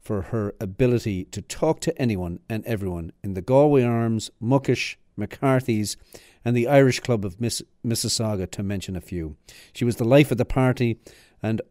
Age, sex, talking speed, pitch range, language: 50-69, male, 170 wpm, 100-135 Hz, English